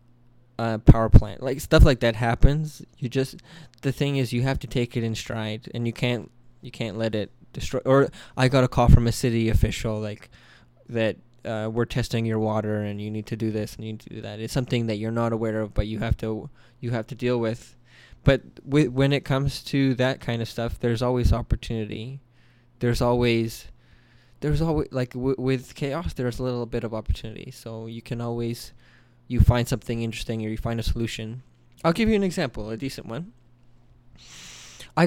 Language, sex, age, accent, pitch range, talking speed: English, male, 20-39, American, 115-125 Hz, 210 wpm